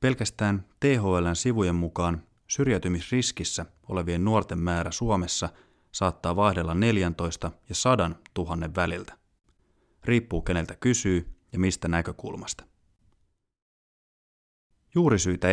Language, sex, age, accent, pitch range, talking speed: Finnish, male, 30-49, native, 85-105 Hz, 90 wpm